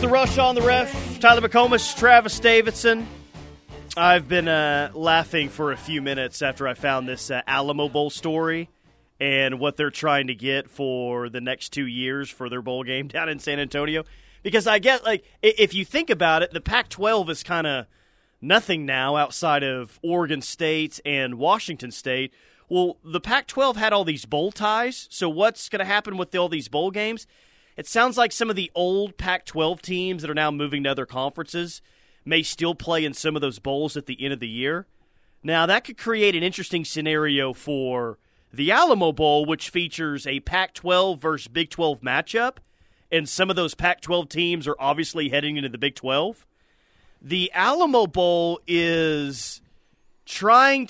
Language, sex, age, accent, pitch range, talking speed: English, male, 30-49, American, 140-195 Hz, 180 wpm